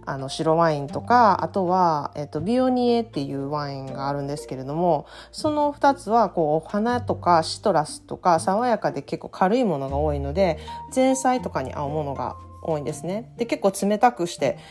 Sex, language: female, Japanese